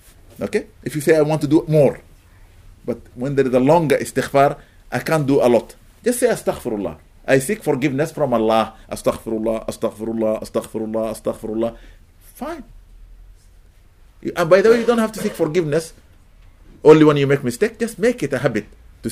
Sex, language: male, English